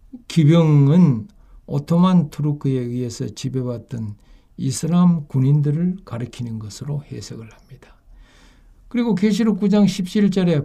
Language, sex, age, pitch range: Korean, male, 60-79, 110-150 Hz